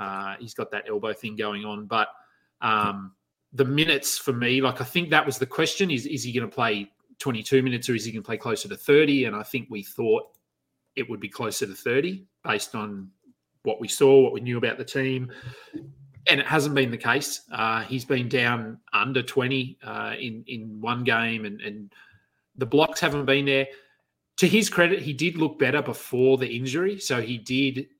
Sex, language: male, English